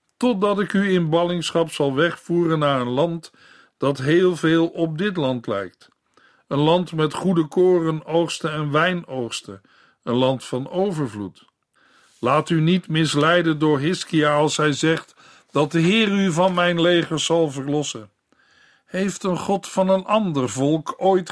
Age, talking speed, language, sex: 50-69, 155 wpm, Dutch, male